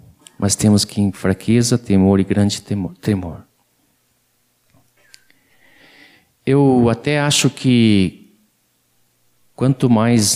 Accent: Brazilian